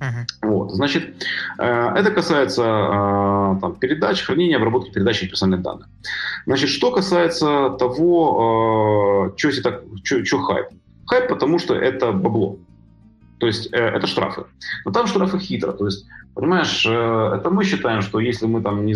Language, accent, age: Ukrainian, native, 30-49